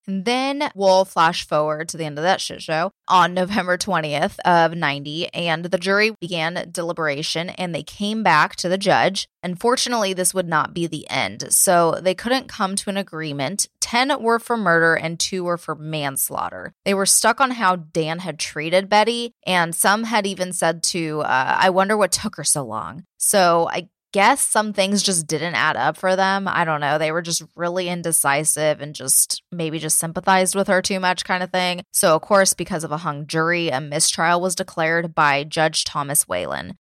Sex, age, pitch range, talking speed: female, 20-39, 155-195 Hz, 200 wpm